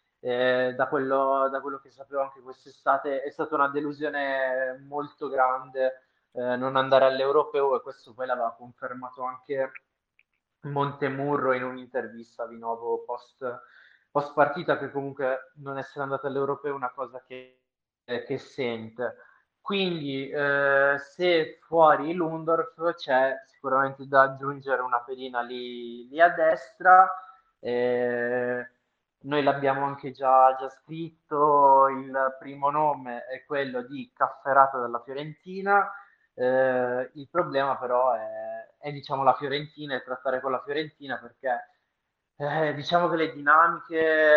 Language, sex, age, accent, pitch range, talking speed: Italian, male, 20-39, native, 130-145 Hz, 125 wpm